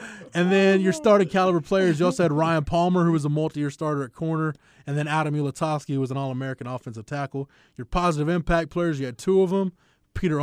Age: 20-39